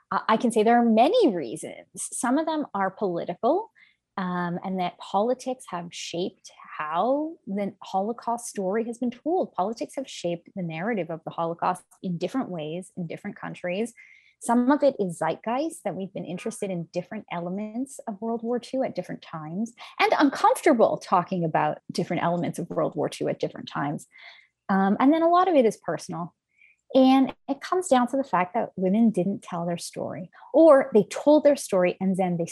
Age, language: 20-39, English